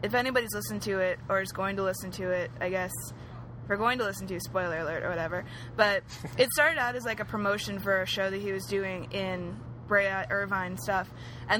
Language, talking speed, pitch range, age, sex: English, 235 wpm, 185-205 Hz, 20-39, female